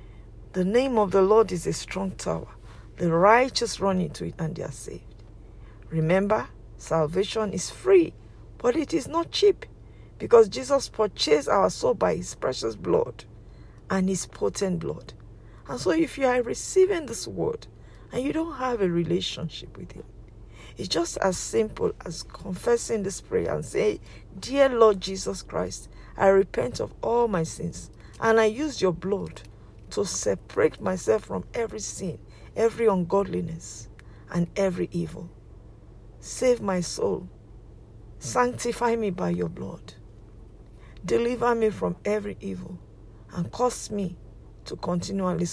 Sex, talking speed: female, 145 wpm